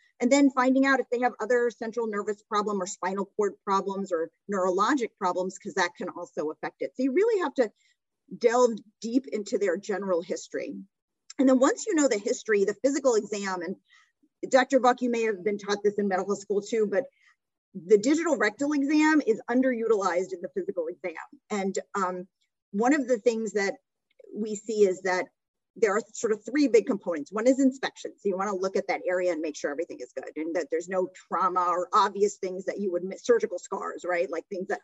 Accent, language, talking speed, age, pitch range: American, English, 210 wpm, 40-59, 190-275 Hz